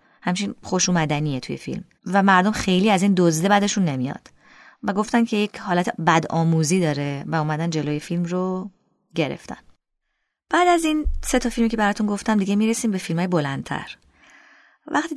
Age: 20-39